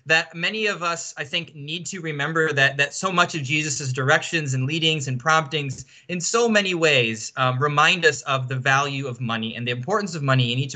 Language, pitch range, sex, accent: English, 130-170 Hz, male, American